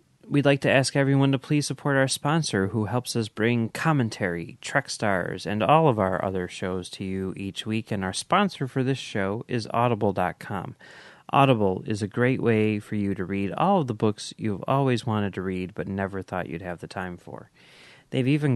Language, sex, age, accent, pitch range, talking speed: English, male, 30-49, American, 95-130 Hz, 205 wpm